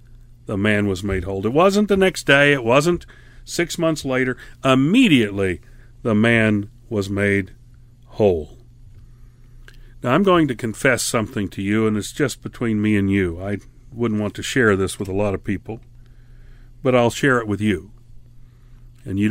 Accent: American